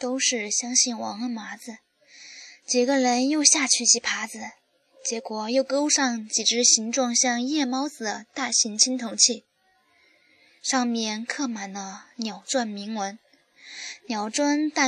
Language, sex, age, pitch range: Chinese, female, 10-29, 225-265 Hz